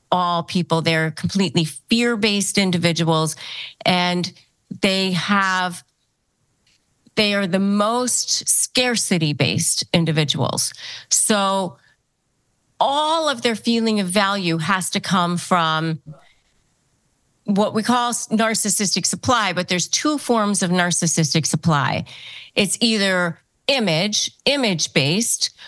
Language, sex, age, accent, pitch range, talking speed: English, female, 40-59, American, 170-225 Hz, 105 wpm